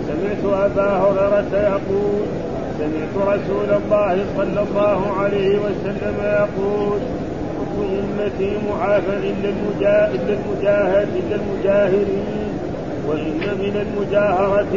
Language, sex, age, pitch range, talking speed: Arabic, male, 40-59, 195-205 Hz, 90 wpm